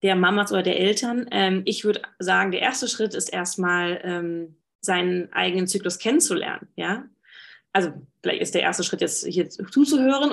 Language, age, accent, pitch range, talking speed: German, 20-39, German, 175-200 Hz, 170 wpm